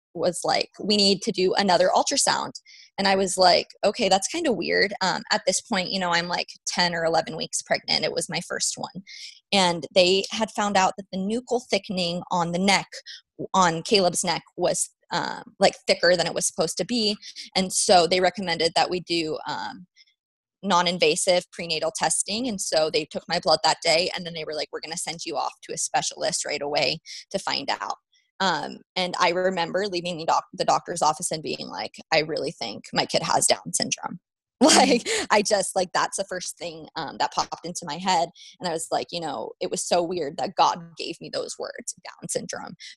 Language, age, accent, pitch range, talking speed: English, 20-39, American, 170-200 Hz, 210 wpm